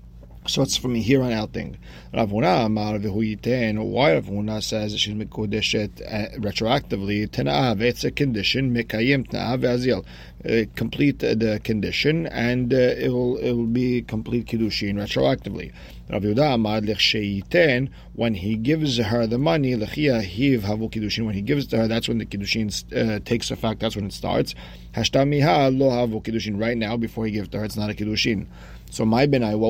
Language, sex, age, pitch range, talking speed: English, male, 40-59, 105-120 Hz, 140 wpm